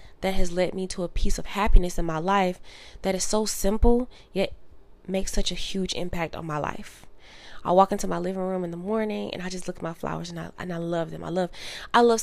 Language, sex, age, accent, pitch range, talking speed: English, female, 20-39, American, 165-195 Hz, 250 wpm